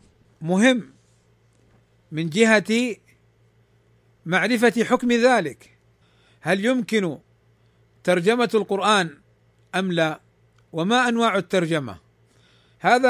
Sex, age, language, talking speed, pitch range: male, 50-69, Arabic, 75 wpm, 165-225 Hz